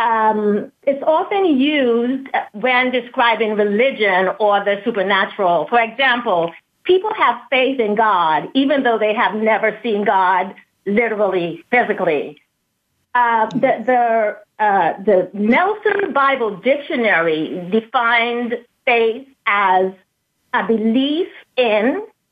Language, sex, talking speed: English, female, 110 wpm